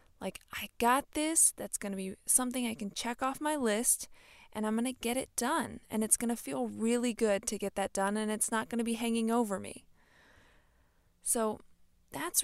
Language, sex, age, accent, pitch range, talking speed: English, female, 20-39, American, 195-240 Hz, 210 wpm